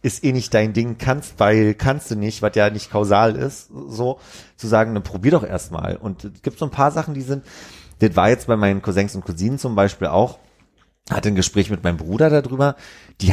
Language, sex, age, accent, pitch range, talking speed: German, male, 30-49, German, 100-130 Hz, 225 wpm